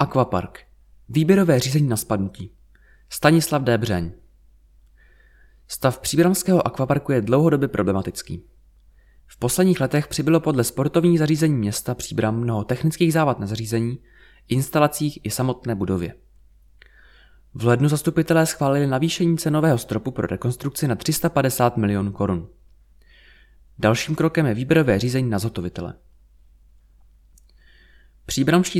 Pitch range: 100-155 Hz